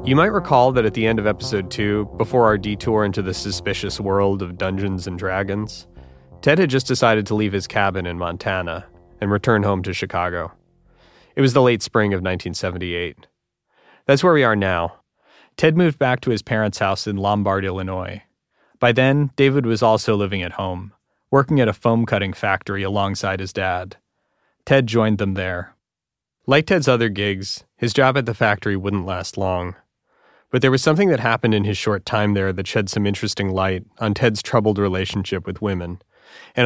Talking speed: 185 wpm